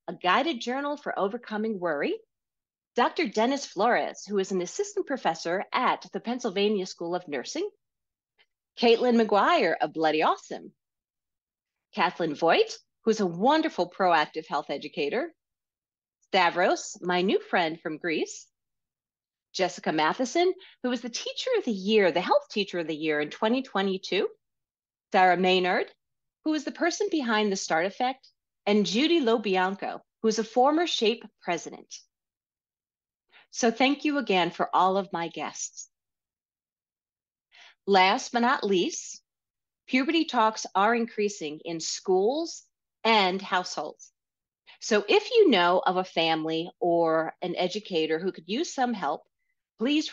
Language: English